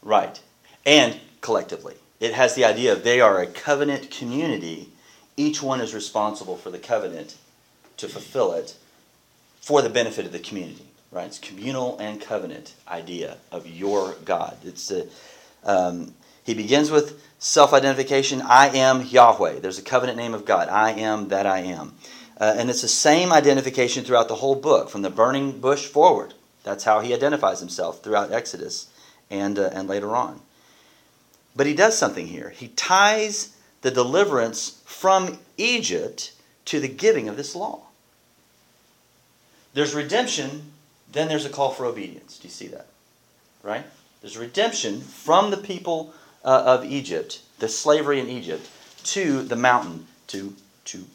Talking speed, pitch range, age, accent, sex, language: 155 wpm, 110-150 Hz, 30-49, American, male, English